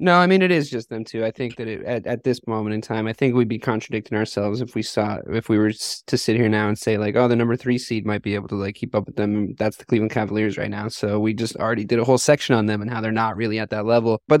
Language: English